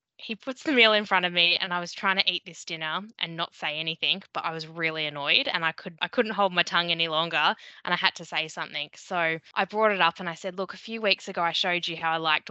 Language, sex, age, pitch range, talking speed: English, female, 10-29, 160-195 Hz, 295 wpm